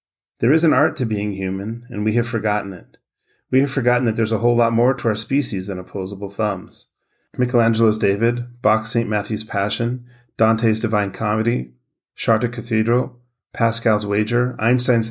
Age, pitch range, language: 30-49, 100-120 Hz, English